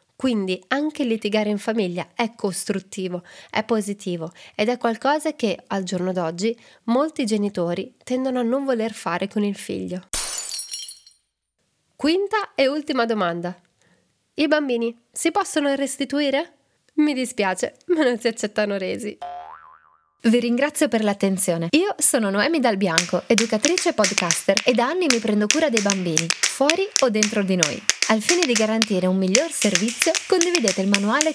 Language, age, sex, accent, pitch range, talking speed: Italian, 20-39, female, native, 195-265 Hz, 145 wpm